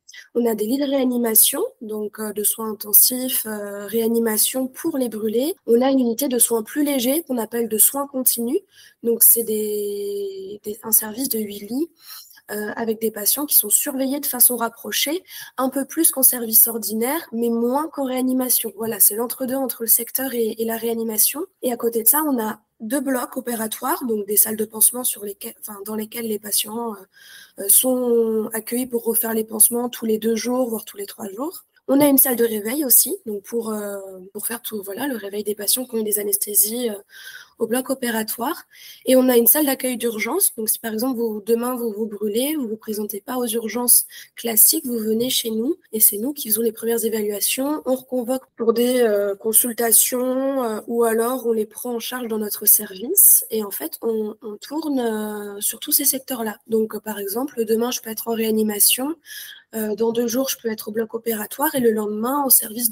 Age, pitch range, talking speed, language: 20-39, 215-260 Hz, 210 wpm, French